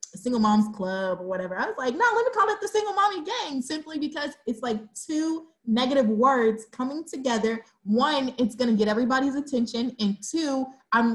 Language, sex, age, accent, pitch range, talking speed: English, female, 20-39, American, 215-280 Hz, 195 wpm